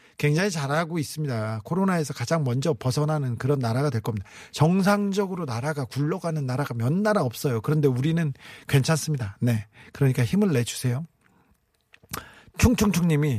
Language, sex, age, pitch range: Korean, male, 40-59, 130-200 Hz